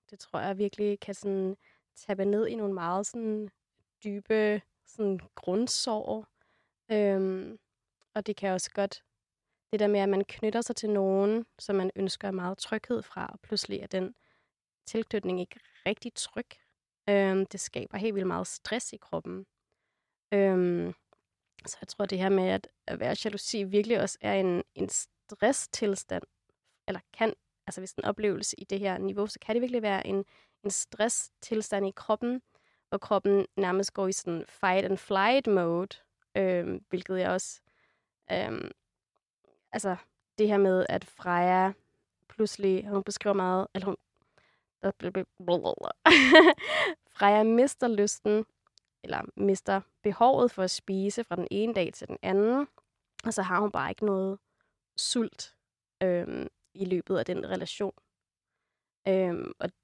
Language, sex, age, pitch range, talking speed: Danish, female, 20-39, 190-215 Hz, 140 wpm